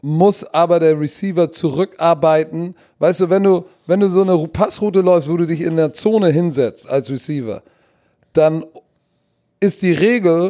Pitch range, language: 155-195 Hz, German